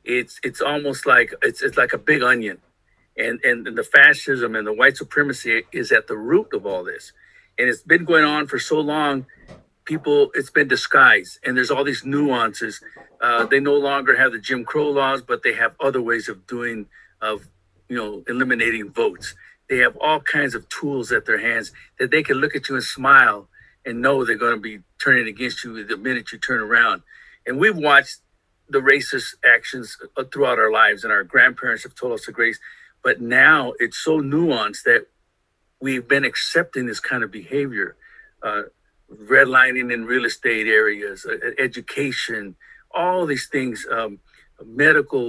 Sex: male